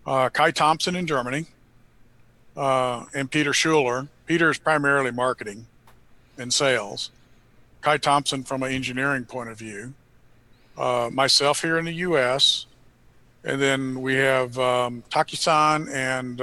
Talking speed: 130 wpm